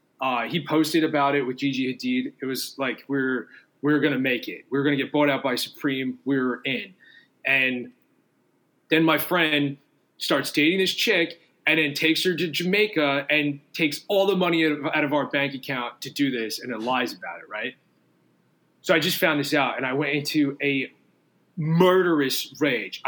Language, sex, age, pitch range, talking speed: English, male, 20-39, 135-160 Hz, 190 wpm